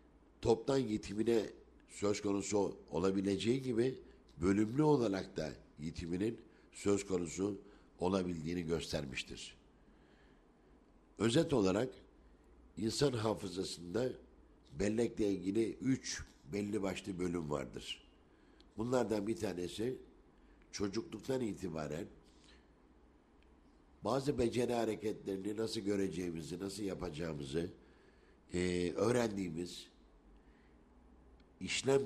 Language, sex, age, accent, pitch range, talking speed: Turkish, male, 60-79, native, 85-110 Hz, 75 wpm